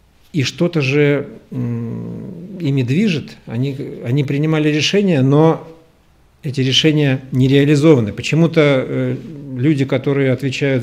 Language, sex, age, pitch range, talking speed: Russian, male, 50-69, 115-145 Hz, 100 wpm